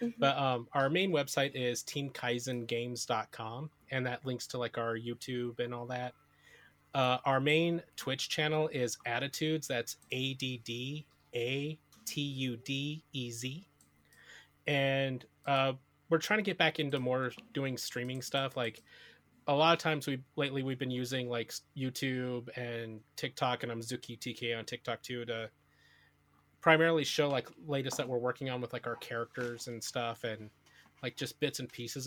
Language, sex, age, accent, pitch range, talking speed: English, male, 30-49, American, 120-140 Hz, 165 wpm